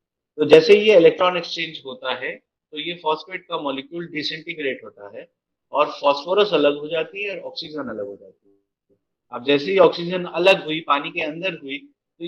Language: Hindi